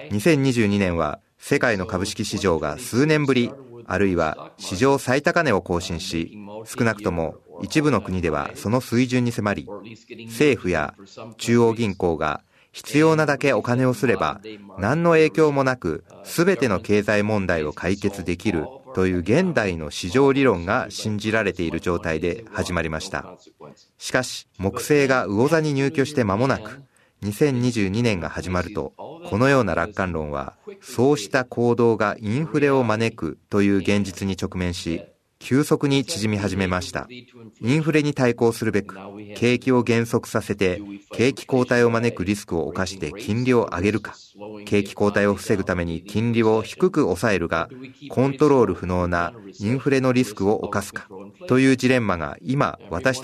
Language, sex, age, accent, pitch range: Japanese, male, 40-59, native, 95-130 Hz